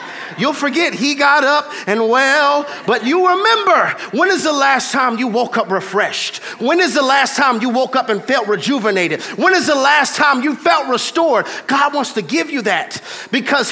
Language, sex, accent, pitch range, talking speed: English, male, American, 225-330 Hz, 195 wpm